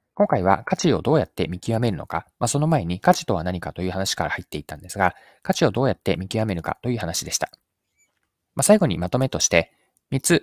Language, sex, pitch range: Japanese, male, 90-135 Hz